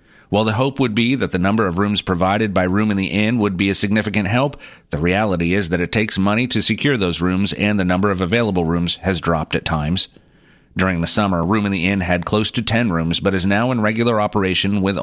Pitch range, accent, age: 85-105 Hz, American, 40-59